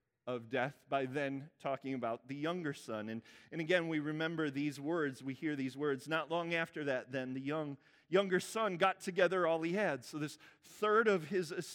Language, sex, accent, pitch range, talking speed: English, male, American, 135-210 Hz, 200 wpm